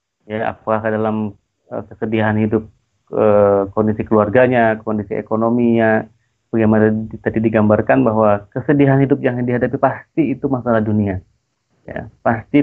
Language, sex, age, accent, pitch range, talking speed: Indonesian, male, 30-49, native, 110-125 Hz, 110 wpm